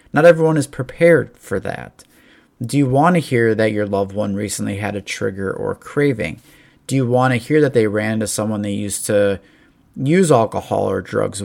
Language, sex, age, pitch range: English, male, 30-49, 105-135 Hz